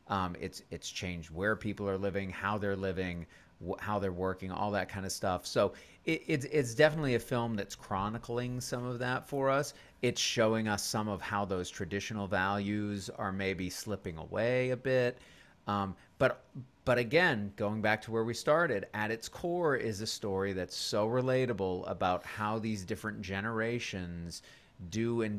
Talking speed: 175 wpm